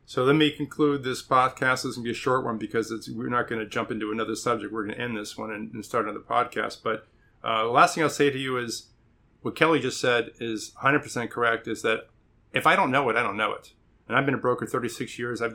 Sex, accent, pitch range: male, American, 115-145 Hz